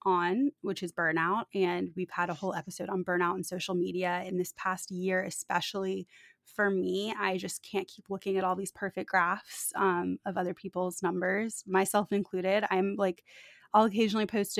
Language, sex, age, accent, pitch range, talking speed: English, female, 20-39, American, 185-205 Hz, 180 wpm